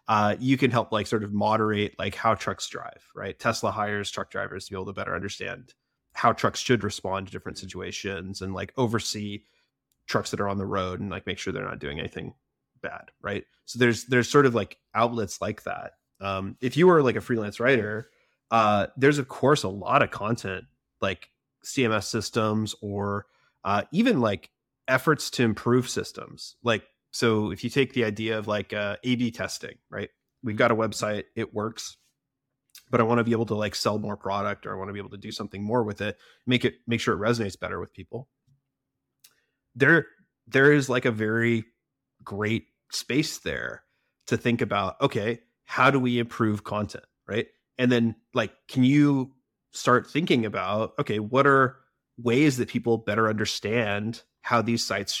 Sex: male